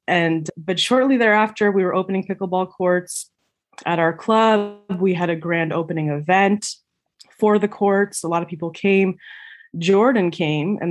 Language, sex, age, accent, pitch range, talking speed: English, female, 20-39, American, 160-190 Hz, 160 wpm